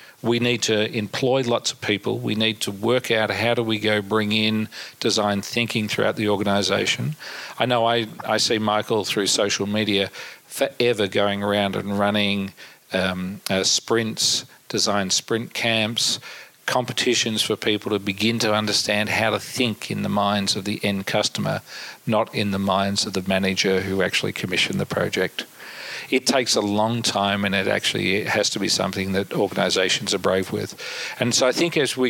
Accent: Australian